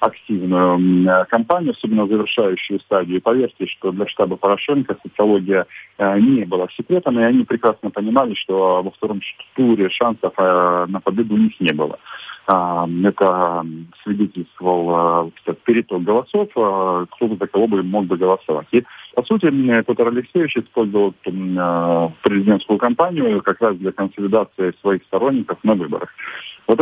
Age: 20-39